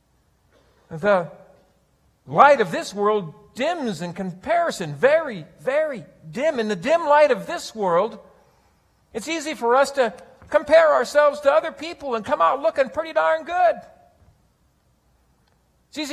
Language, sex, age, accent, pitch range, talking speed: English, male, 50-69, American, 220-300 Hz, 135 wpm